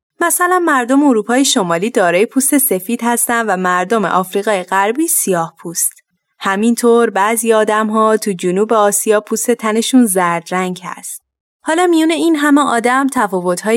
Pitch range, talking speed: 190-260 Hz, 140 wpm